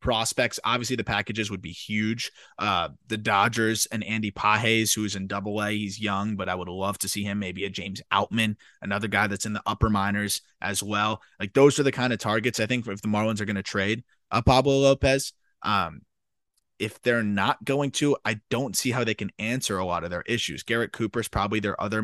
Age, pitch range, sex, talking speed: 20-39, 105-130 Hz, male, 220 wpm